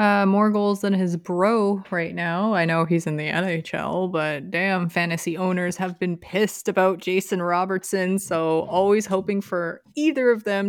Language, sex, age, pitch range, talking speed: English, female, 20-39, 175-210 Hz, 175 wpm